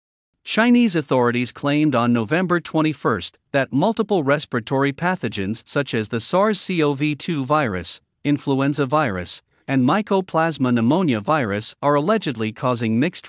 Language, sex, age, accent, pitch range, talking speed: English, male, 50-69, American, 120-170 Hz, 120 wpm